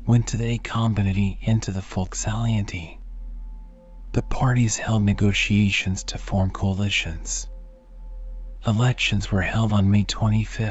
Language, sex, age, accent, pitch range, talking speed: English, male, 40-59, American, 95-110 Hz, 125 wpm